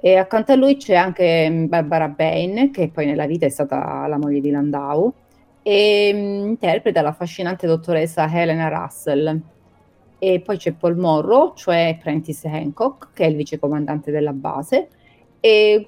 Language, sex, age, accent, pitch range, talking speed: Italian, female, 30-49, native, 155-195 Hz, 145 wpm